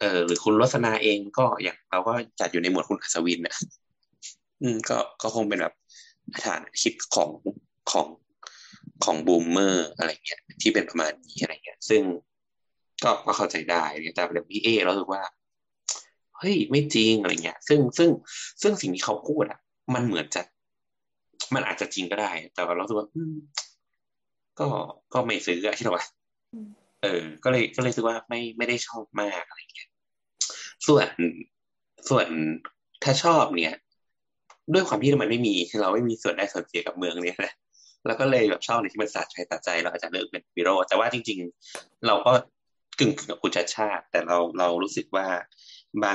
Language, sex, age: Thai, male, 20-39